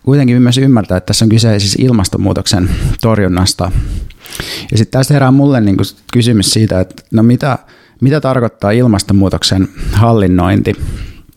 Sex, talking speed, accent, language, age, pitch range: male, 130 wpm, native, Finnish, 30-49, 95-115 Hz